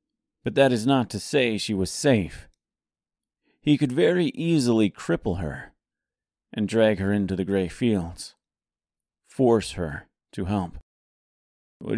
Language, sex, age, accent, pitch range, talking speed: English, male, 40-59, American, 90-115 Hz, 135 wpm